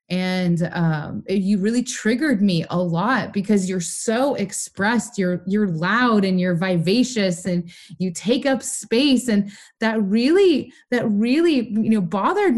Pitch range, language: 190-240 Hz, English